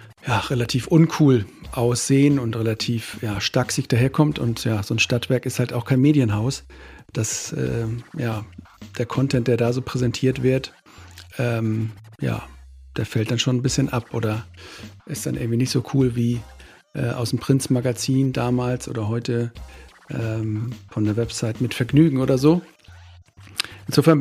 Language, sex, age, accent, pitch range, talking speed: German, male, 50-69, German, 110-135 Hz, 160 wpm